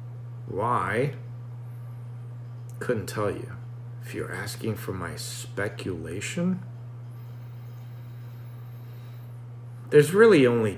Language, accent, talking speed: Swedish, American, 70 wpm